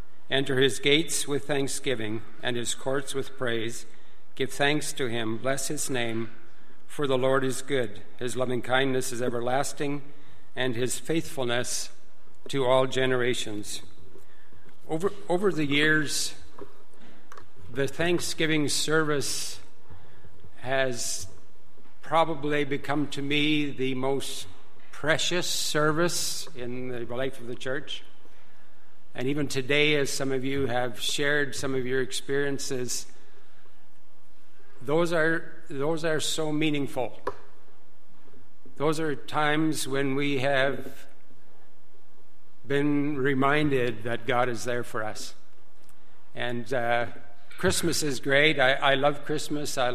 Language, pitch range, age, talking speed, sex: English, 125-145 Hz, 60-79, 120 wpm, male